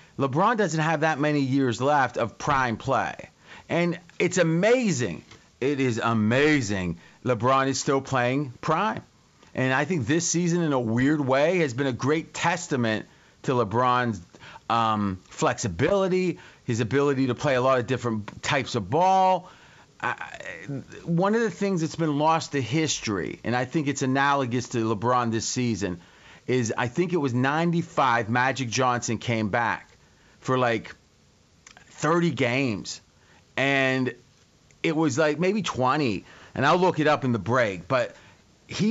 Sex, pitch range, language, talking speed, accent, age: male, 125-155 Hz, English, 150 wpm, American, 40-59